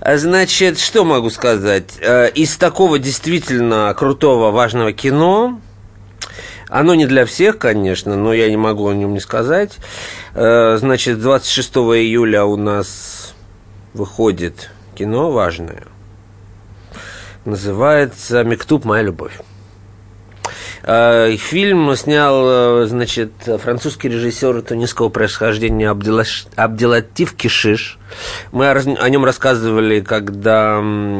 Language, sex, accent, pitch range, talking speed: Russian, male, native, 105-135 Hz, 95 wpm